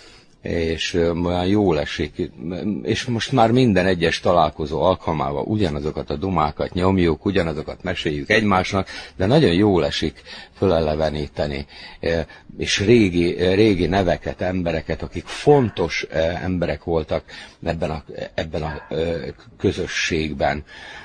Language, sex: Hungarian, male